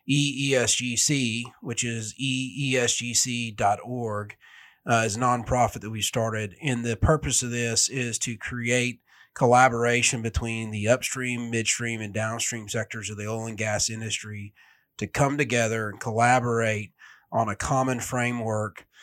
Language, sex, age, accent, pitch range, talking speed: English, male, 30-49, American, 110-125 Hz, 130 wpm